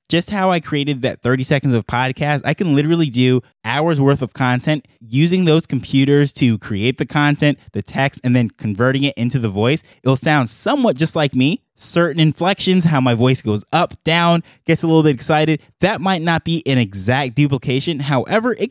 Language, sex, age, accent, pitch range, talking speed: English, male, 20-39, American, 130-160 Hz, 195 wpm